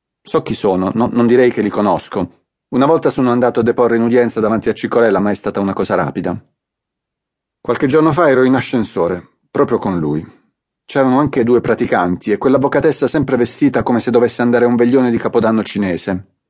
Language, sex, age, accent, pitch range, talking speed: Italian, male, 40-59, native, 110-135 Hz, 195 wpm